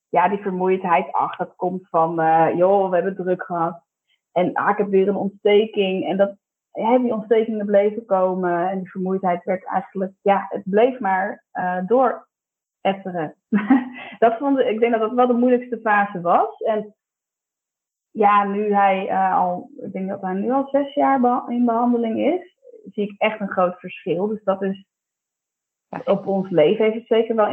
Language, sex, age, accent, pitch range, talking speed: Dutch, female, 20-39, Dutch, 185-225 Hz, 170 wpm